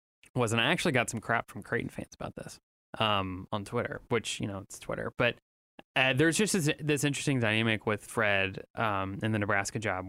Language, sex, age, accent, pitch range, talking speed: English, male, 20-39, American, 110-135 Hz, 210 wpm